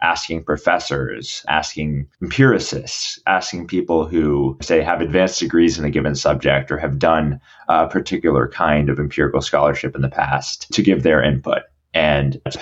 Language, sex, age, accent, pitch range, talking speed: English, male, 30-49, American, 75-95 Hz, 155 wpm